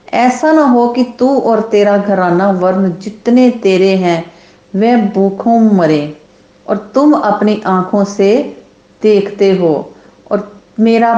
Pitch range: 185-230 Hz